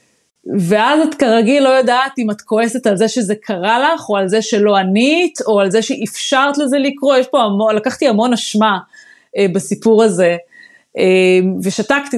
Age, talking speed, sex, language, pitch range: 30-49, 170 wpm, female, Hebrew, 195-265 Hz